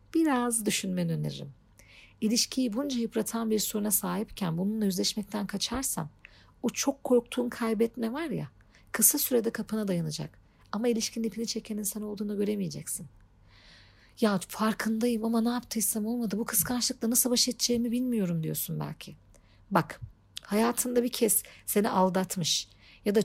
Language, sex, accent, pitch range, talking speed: Turkish, female, native, 180-225 Hz, 130 wpm